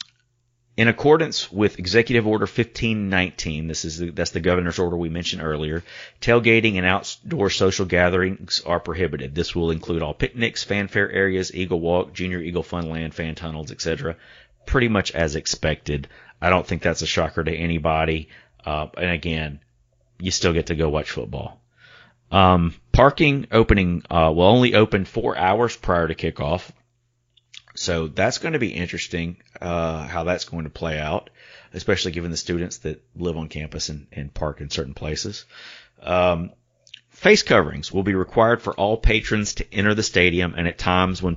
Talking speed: 170 wpm